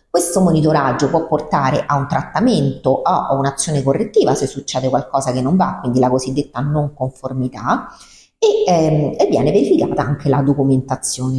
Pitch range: 135-170 Hz